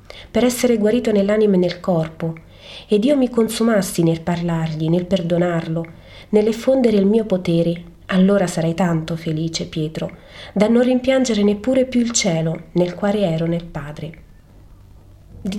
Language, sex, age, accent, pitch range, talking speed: Italian, female, 30-49, native, 160-210 Hz, 140 wpm